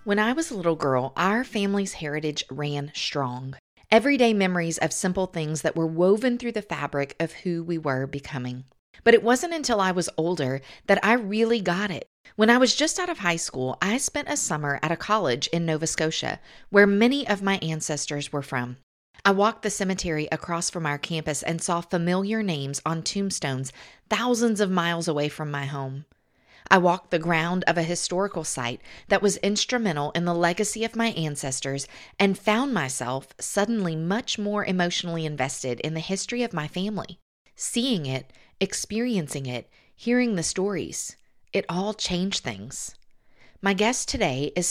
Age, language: 40-59, English